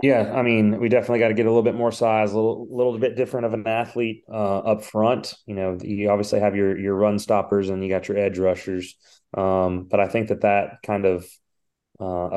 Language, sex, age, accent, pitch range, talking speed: English, male, 30-49, American, 95-110 Hz, 235 wpm